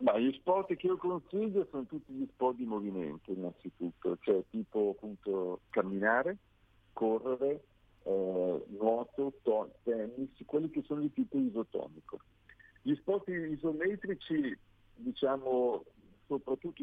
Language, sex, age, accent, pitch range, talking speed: Italian, male, 50-69, native, 110-180 Hz, 115 wpm